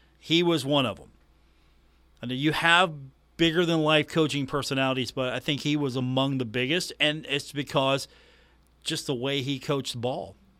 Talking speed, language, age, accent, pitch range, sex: 160 wpm, English, 40-59, American, 120-145 Hz, male